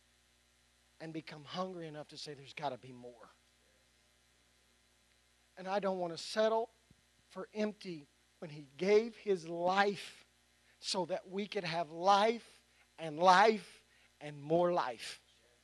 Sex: male